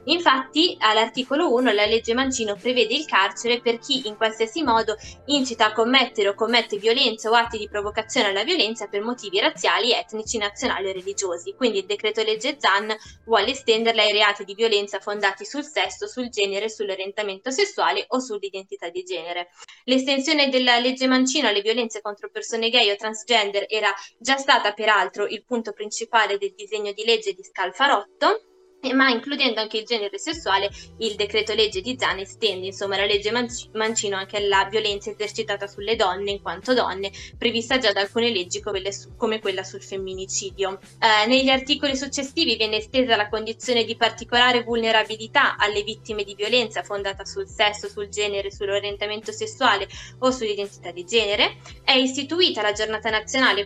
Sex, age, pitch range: female, 20-39, 205-255 Hz